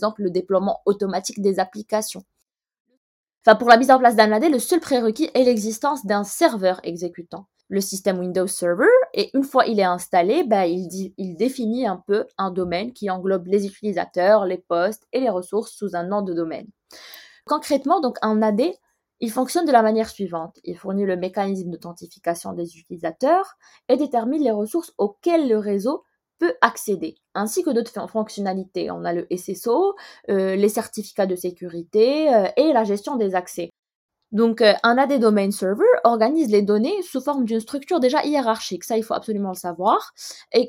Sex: female